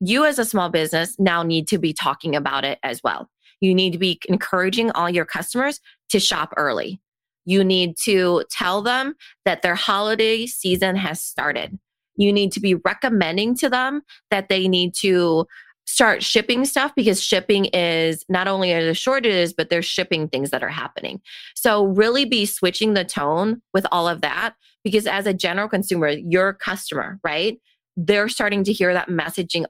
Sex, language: female, English